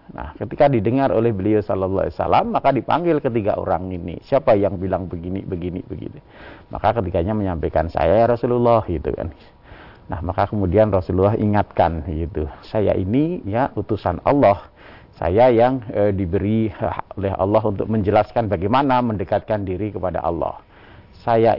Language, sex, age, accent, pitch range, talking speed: Indonesian, male, 50-69, native, 95-120 Hz, 135 wpm